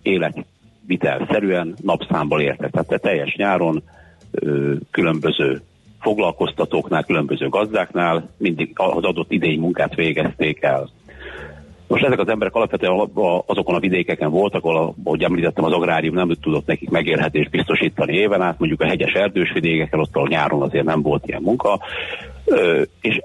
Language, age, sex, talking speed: Hungarian, 60-79, male, 135 wpm